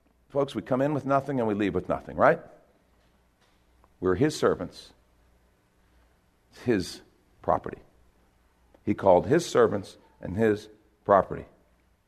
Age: 50-69